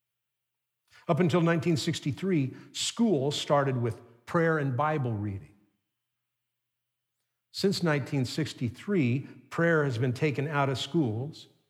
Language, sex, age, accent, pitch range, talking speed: English, male, 50-69, American, 115-155 Hz, 95 wpm